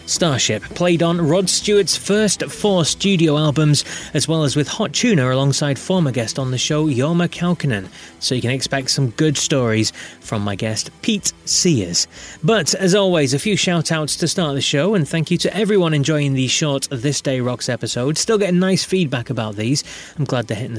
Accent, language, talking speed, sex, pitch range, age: British, English, 195 wpm, male, 135-180 Hz, 30-49